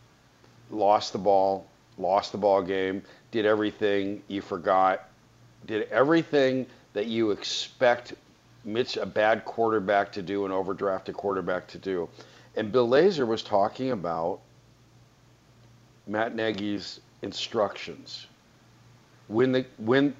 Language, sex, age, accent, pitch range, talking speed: English, male, 50-69, American, 100-130 Hz, 110 wpm